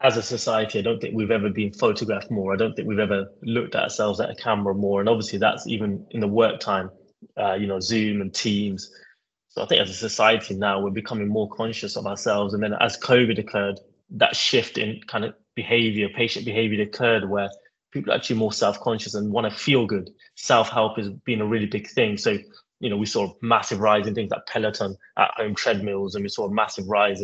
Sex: male